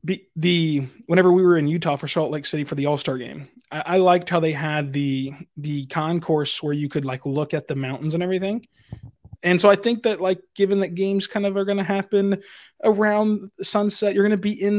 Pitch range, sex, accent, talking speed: 155-185 Hz, male, American, 225 wpm